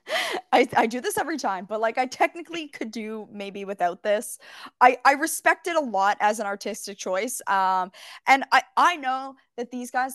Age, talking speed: 20-39, 195 wpm